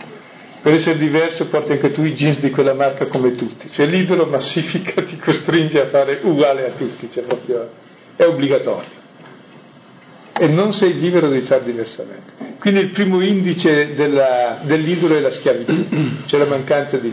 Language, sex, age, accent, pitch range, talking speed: Italian, male, 50-69, native, 135-180 Hz, 160 wpm